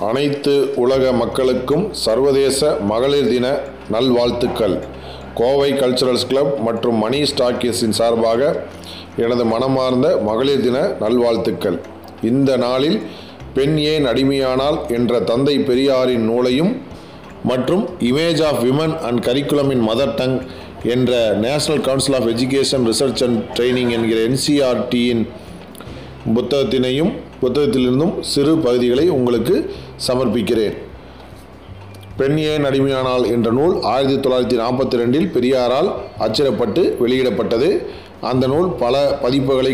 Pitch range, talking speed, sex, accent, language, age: 115-140 Hz, 105 wpm, male, native, Tamil, 40-59